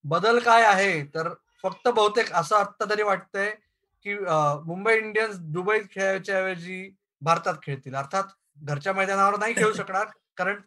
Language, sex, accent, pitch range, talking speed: Marathi, male, native, 175-225 Hz, 90 wpm